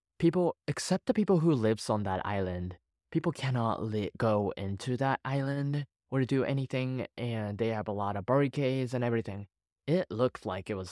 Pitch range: 100-140 Hz